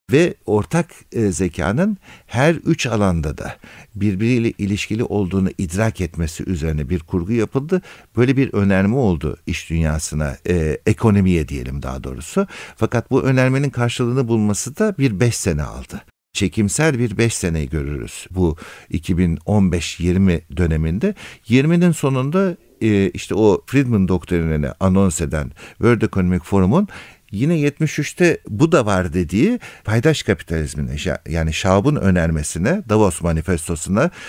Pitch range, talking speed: 85-125 Hz, 125 wpm